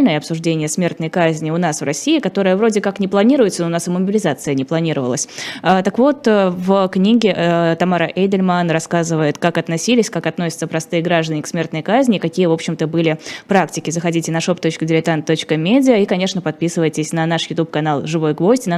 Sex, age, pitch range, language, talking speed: female, 20-39, 160-195 Hz, Russian, 170 wpm